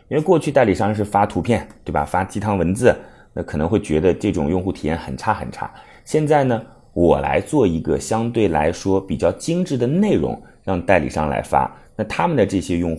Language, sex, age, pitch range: Chinese, male, 30-49, 85-120 Hz